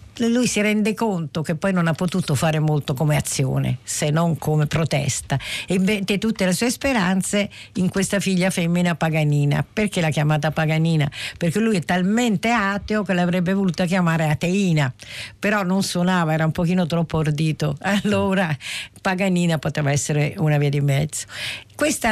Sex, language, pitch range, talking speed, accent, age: female, Italian, 150-190 Hz, 155 wpm, native, 50-69